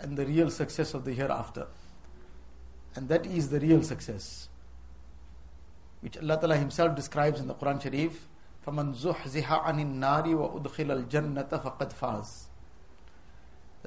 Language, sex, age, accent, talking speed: English, male, 50-69, Indian, 95 wpm